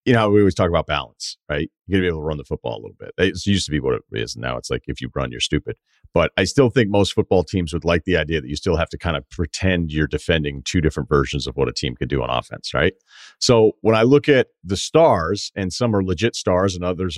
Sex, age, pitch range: male, 40-59, 85-110 Hz